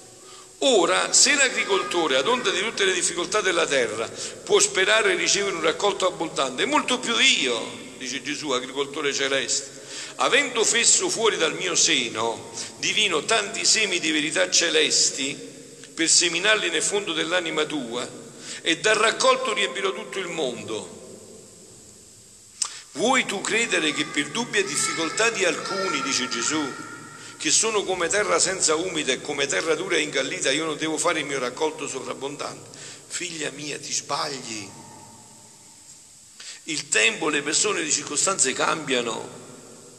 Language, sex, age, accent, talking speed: Italian, male, 50-69, native, 140 wpm